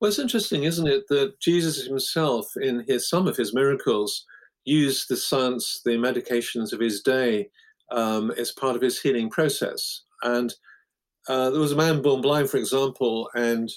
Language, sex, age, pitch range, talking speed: English, male, 50-69, 120-155 Hz, 170 wpm